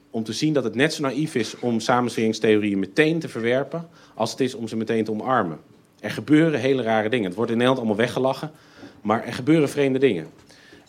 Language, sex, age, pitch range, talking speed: Dutch, male, 40-59, 115-145 Hz, 210 wpm